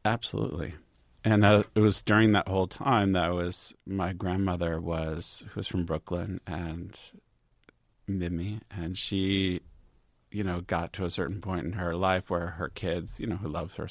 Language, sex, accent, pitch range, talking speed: English, male, American, 80-95 Hz, 175 wpm